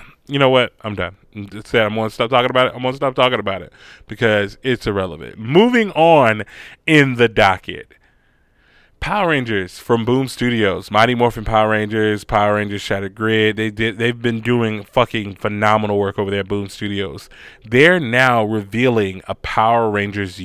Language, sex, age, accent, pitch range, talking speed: English, male, 20-39, American, 100-120 Hz, 175 wpm